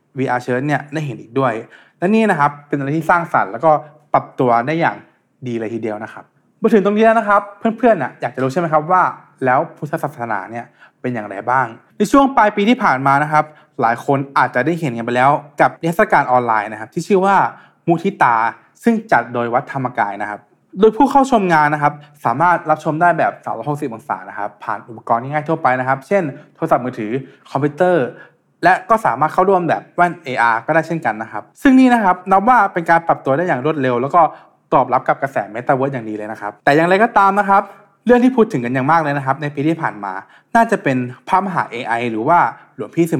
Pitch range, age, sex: 130-185 Hz, 20-39, male